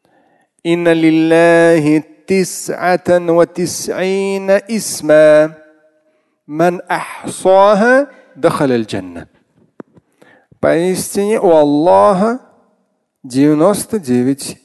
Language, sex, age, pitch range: Russian, male, 40-59, 145-210 Hz